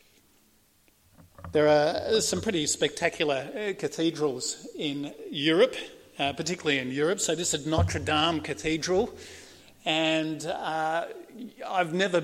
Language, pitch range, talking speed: English, 150-215 Hz, 110 wpm